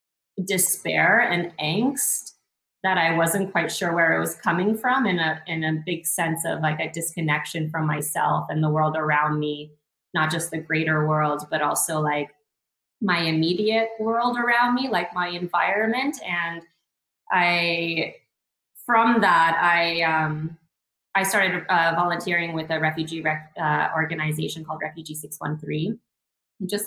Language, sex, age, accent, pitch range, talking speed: English, female, 20-39, American, 155-180 Hz, 145 wpm